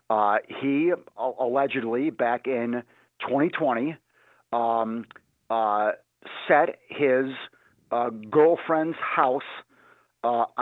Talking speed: 80 wpm